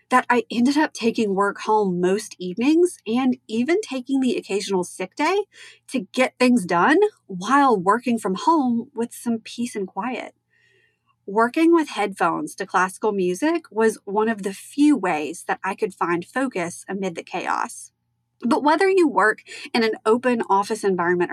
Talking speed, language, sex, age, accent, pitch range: 165 wpm, English, female, 30-49, American, 200-295 Hz